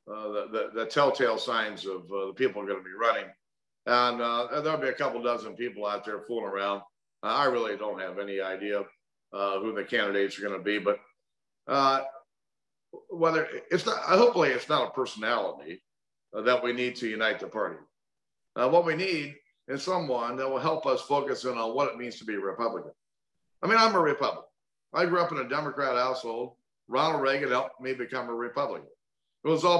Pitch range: 110-140 Hz